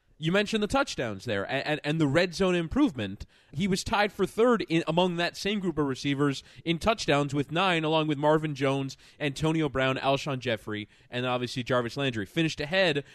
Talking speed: 190 wpm